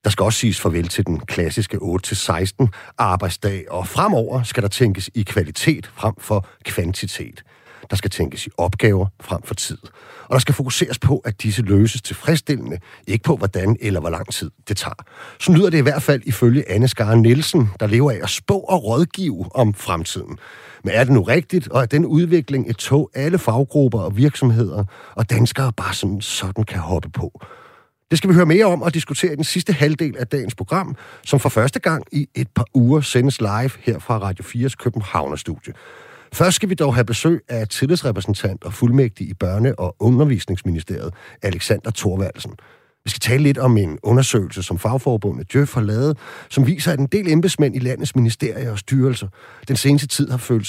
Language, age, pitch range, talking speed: Danish, 40-59, 100-140 Hz, 190 wpm